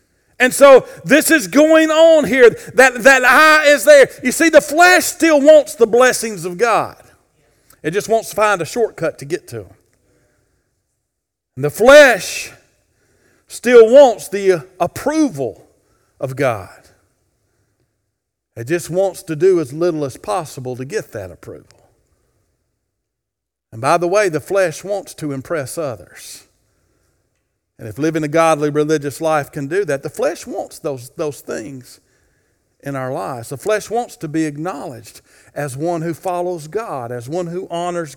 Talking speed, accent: 155 wpm, American